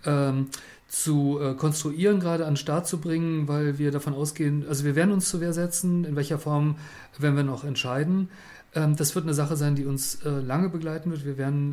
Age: 40-59